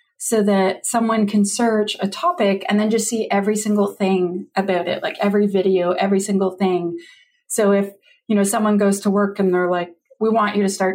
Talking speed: 210 wpm